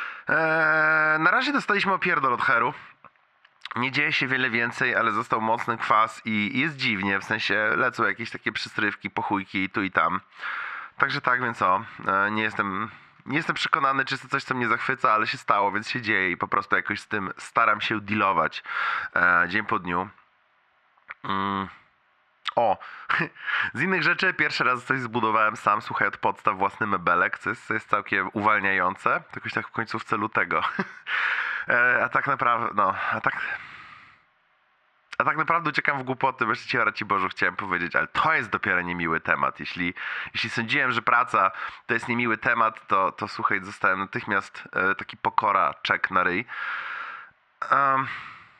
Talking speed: 165 wpm